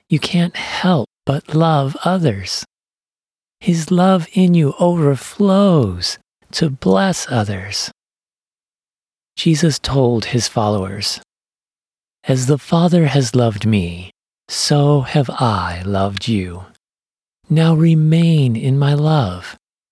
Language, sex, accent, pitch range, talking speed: English, male, American, 110-155 Hz, 100 wpm